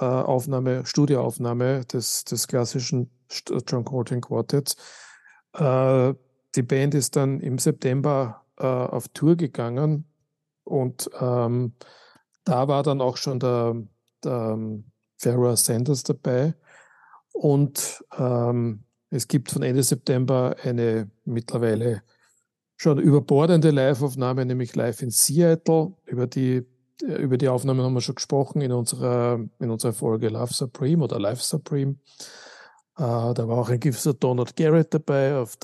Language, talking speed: German, 125 wpm